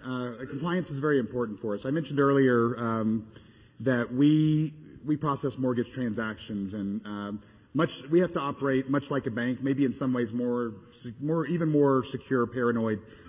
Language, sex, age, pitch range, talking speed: English, male, 30-49, 115-145 Hz, 170 wpm